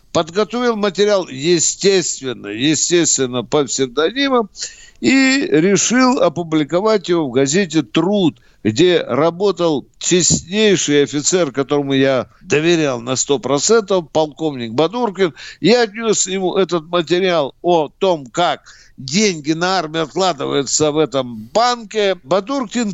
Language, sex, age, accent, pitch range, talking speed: Russian, male, 60-79, native, 140-200 Hz, 105 wpm